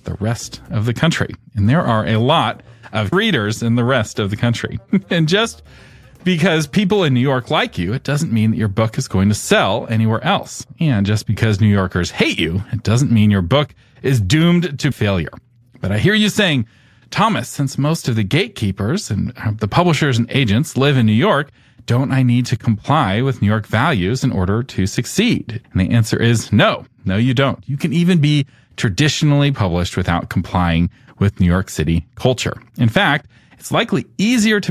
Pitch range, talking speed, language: 110-145 Hz, 200 wpm, English